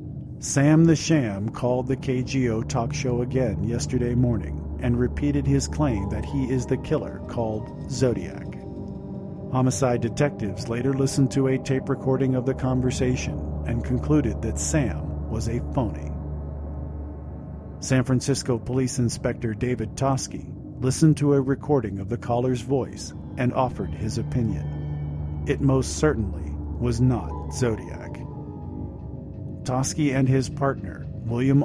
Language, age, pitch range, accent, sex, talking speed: English, 50-69, 100-135 Hz, American, male, 130 wpm